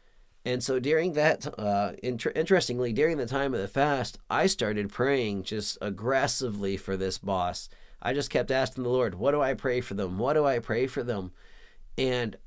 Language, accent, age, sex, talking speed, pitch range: English, American, 40-59, male, 190 wpm, 110-145 Hz